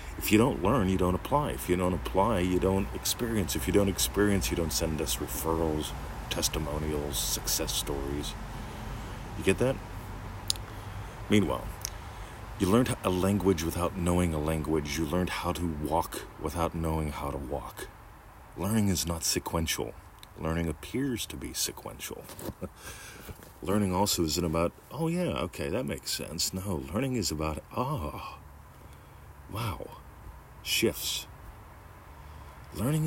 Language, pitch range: English, 75-105 Hz